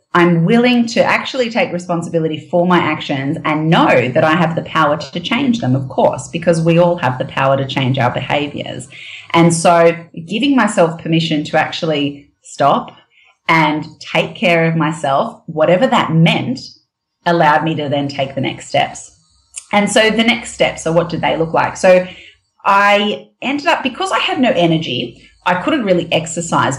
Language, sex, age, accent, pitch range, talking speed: English, female, 30-49, Australian, 150-185 Hz, 175 wpm